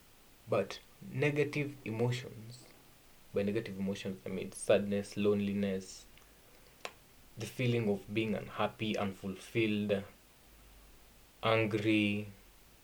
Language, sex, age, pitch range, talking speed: Swahili, male, 20-39, 100-120 Hz, 85 wpm